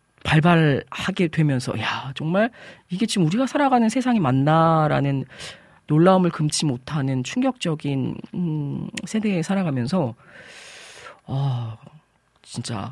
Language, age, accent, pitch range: Korean, 40-59, native, 135-205 Hz